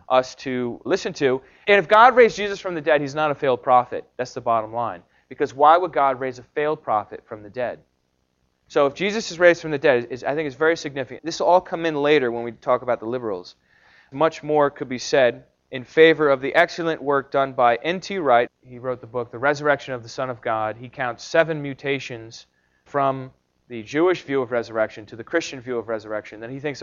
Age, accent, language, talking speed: 30-49, American, English, 230 wpm